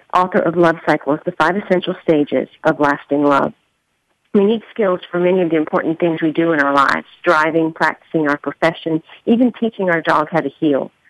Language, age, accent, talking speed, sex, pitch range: English, 50-69, American, 195 wpm, female, 155-190 Hz